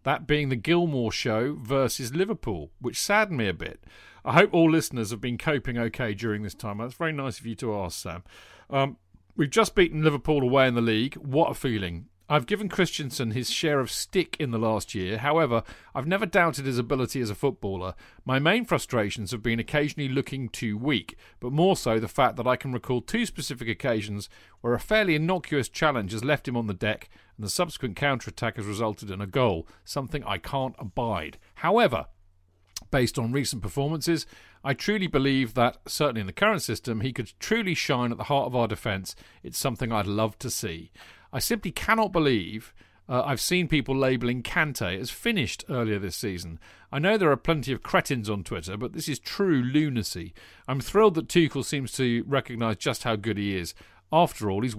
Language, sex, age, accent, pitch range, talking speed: English, male, 40-59, British, 105-145 Hz, 200 wpm